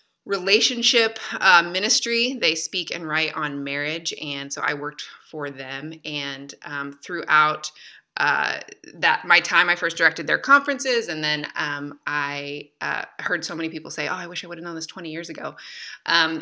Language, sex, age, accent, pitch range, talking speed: English, female, 20-39, American, 155-195 Hz, 175 wpm